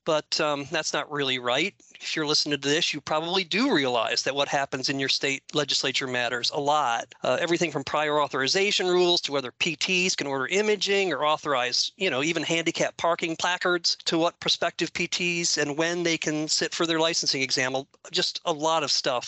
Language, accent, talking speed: English, American, 195 wpm